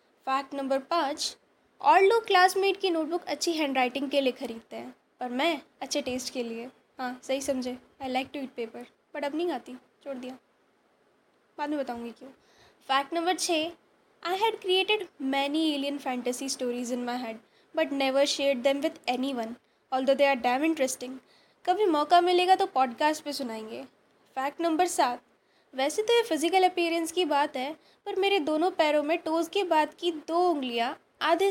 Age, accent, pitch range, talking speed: 10-29, native, 260-340 Hz, 175 wpm